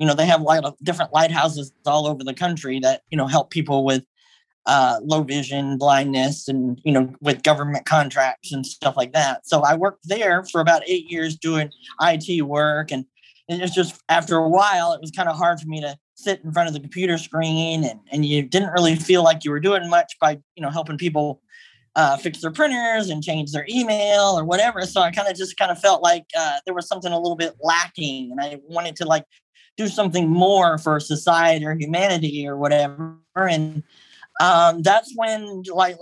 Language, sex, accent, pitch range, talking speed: English, male, American, 150-185 Hz, 215 wpm